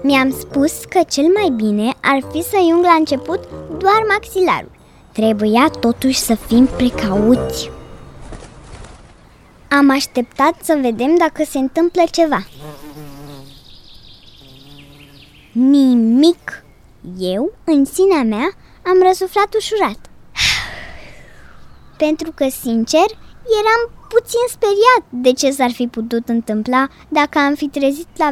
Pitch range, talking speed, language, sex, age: 230-325 Hz, 110 wpm, Romanian, male, 20-39